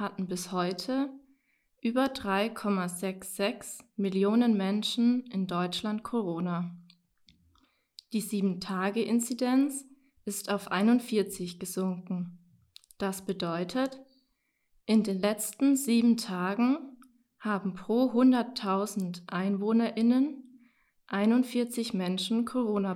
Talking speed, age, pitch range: 80 wpm, 20-39, 190-245 Hz